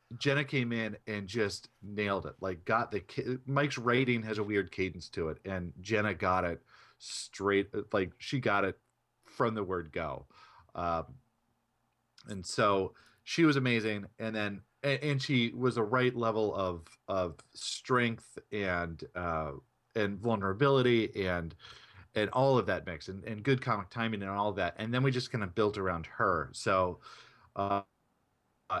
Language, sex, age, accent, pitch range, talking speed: English, male, 40-59, American, 95-120 Hz, 165 wpm